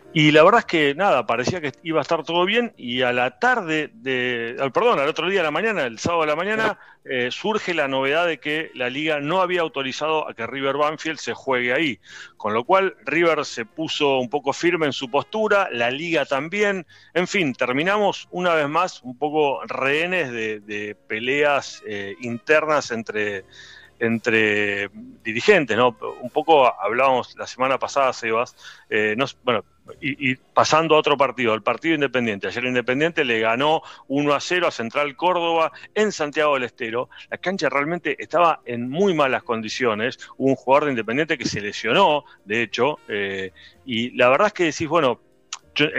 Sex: male